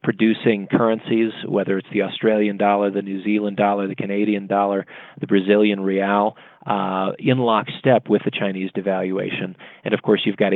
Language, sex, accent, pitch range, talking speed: English, male, American, 100-115 Hz, 165 wpm